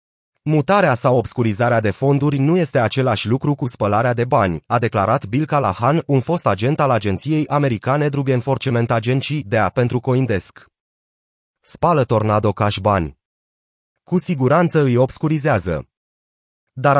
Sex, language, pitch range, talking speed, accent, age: male, Romanian, 115-145 Hz, 135 wpm, native, 30-49